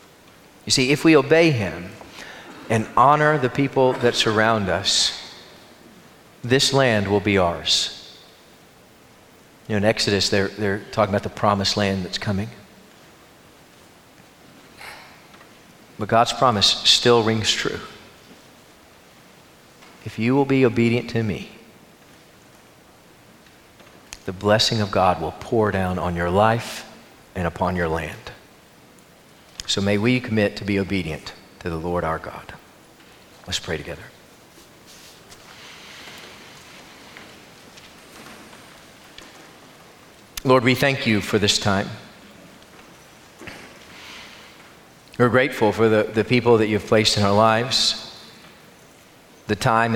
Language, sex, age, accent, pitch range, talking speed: English, male, 40-59, American, 100-115 Hz, 115 wpm